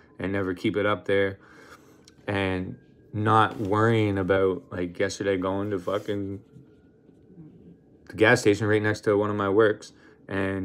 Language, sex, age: English, male, 20-39